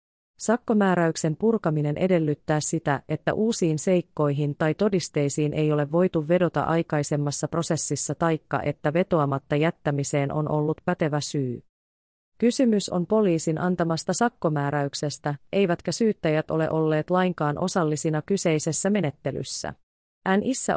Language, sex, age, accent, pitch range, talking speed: Finnish, female, 30-49, native, 150-180 Hz, 105 wpm